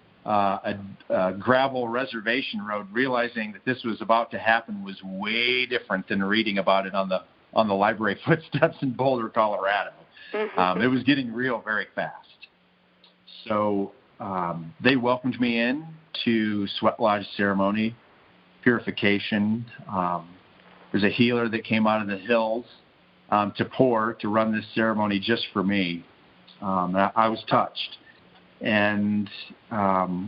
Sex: male